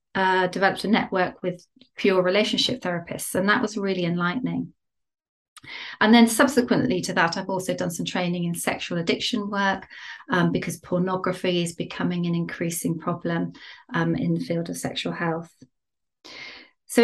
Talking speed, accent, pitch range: 150 wpm, British, 175-235 Hz